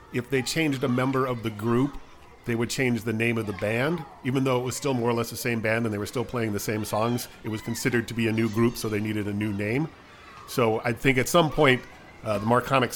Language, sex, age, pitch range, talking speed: English, male, 40-59, 110-130 Hz, 270 wpm